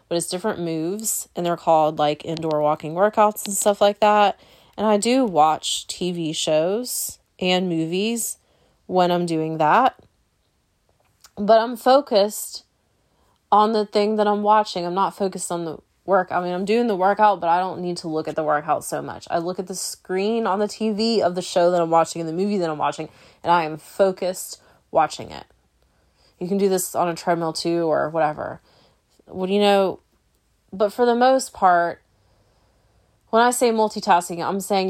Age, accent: 20-39, American